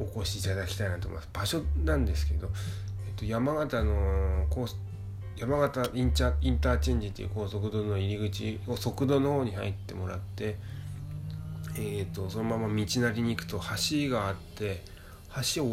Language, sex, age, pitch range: Japanese, male, 20-39, 95-115 Hz